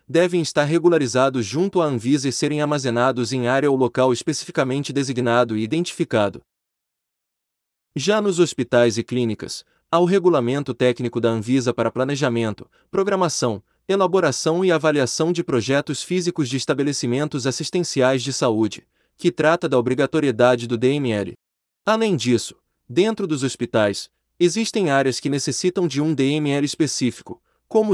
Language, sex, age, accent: Portuguese, male, 30-49, Brazilian